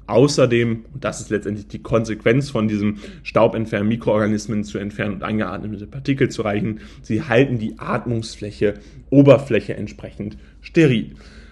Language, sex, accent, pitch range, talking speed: German, male, German, 105-140 Hz, 130 wpm